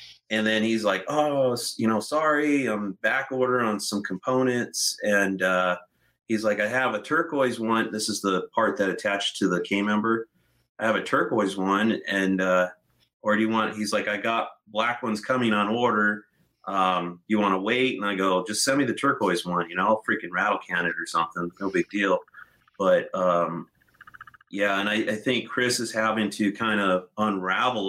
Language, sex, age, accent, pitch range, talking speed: English, male, 30-49, American, 95-115 Hz, 200 wpm